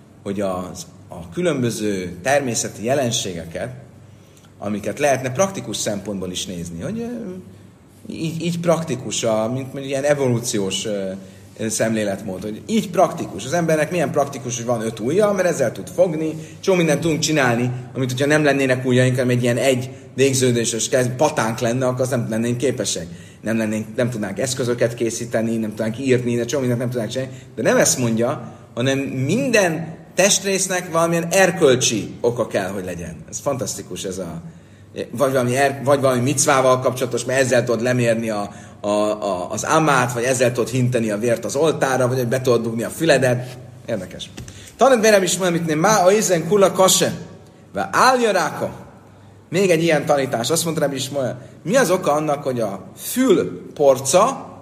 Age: 30-49